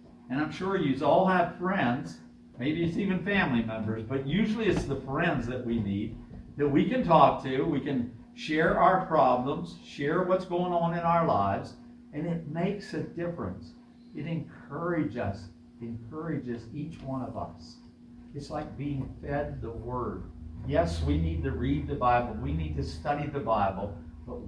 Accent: American